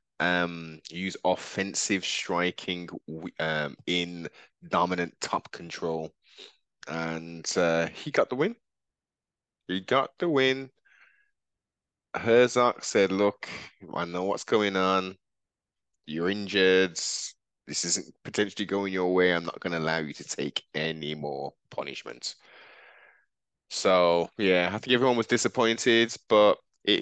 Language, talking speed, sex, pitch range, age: English, 120 wpm, male, 80-100 Hz, 20-39